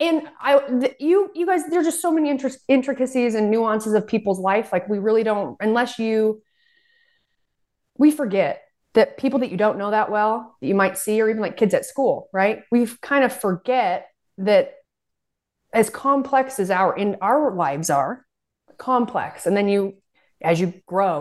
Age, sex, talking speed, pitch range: 30-49, female, 180 wpm, 175-240 Hz